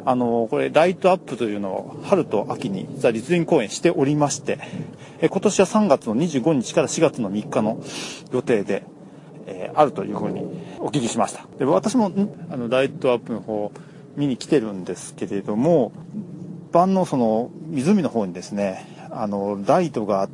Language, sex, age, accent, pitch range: Japanese, male, 40-59, native, 120-185 Hz